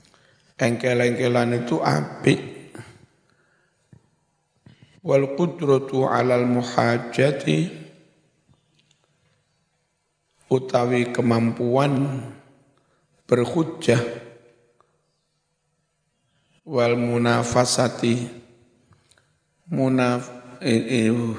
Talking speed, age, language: 30 wpm, 60-79, Indonesian